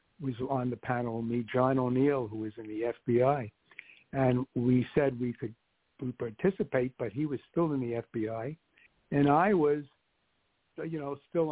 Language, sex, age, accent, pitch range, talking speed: English, male, 60-79, American, 120-145 Hz, 160 wpm